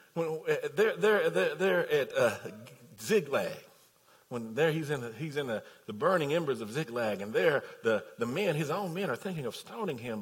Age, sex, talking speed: 50-69, male, 200 wpm